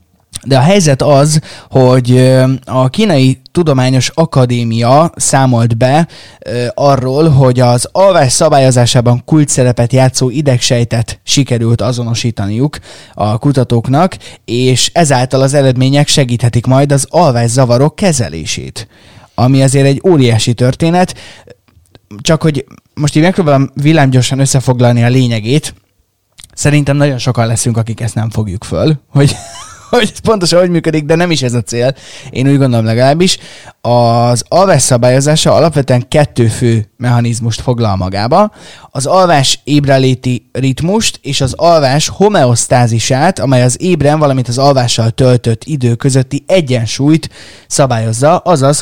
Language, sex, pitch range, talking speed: Hungarian, male, 120-145 Hz, 125 wpm